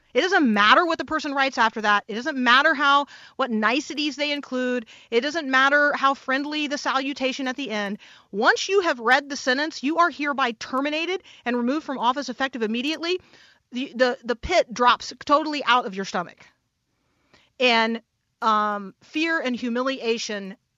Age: 40-59